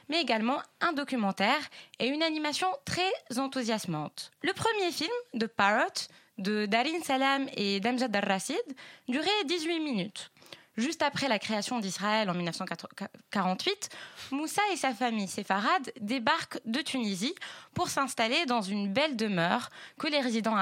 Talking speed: 135 wpm